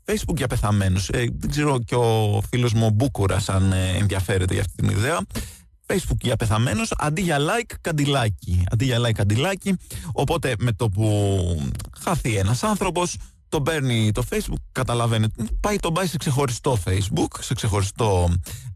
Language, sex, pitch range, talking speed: Greek, male, 100-130 Hz, 135 wpm